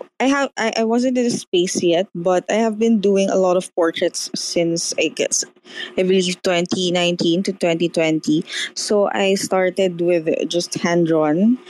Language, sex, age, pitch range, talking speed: English, female, 20-39, 170-215 Hz, 165 wpm